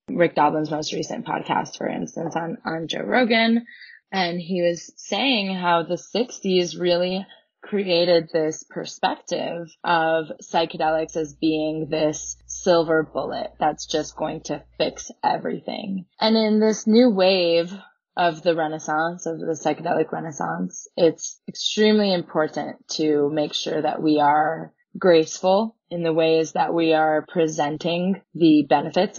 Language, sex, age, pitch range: English, female, 20-39, 155-180 Hz